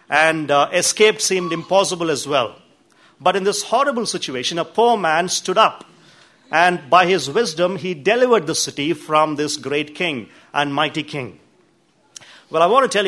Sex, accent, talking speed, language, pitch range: male, Indian, 170 wpm, English, 150-185 Hz